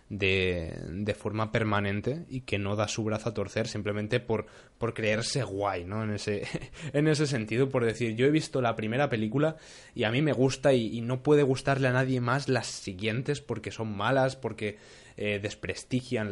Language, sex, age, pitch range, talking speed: Spanish, male, 20-39, 105-130 Hz, 190 wpm